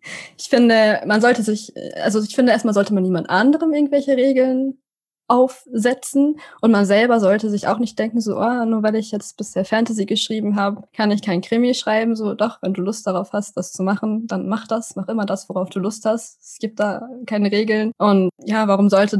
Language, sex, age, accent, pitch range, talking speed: German, female, 20-39, German, 195-240 Hz, 215 wpm